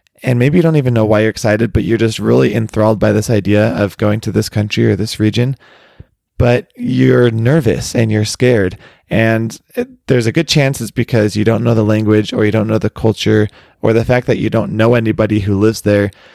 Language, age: English, 20-39